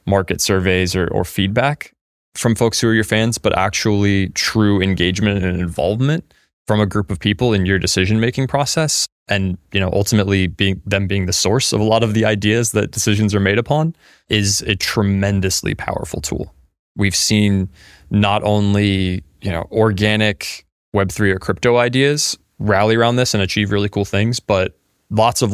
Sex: male